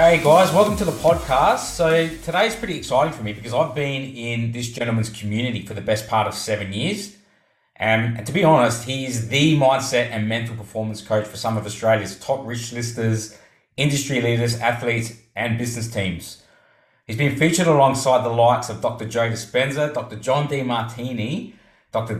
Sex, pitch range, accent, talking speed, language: male, 115-145 Hz, Australian, 180 wpm, English